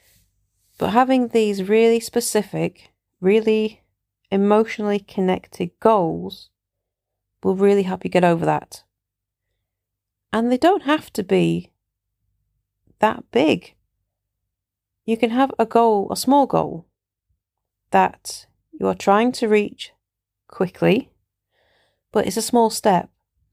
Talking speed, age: 110 wpm, 40-59